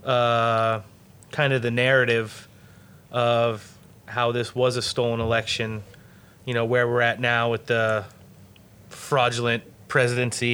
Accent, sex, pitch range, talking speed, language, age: American, male, 110-135 Hz, 125 wpm, English, 30-49